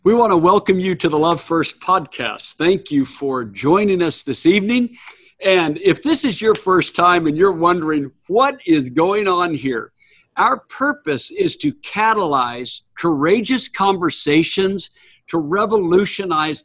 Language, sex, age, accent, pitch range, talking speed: English, male, 60-79, American, 145-215 Hz, 145 wpm